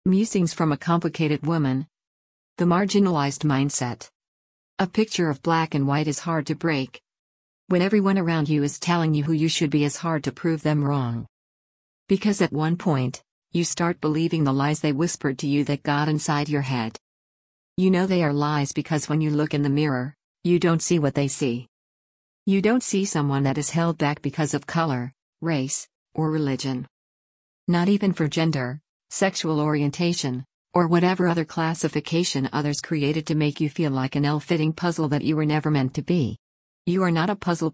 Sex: female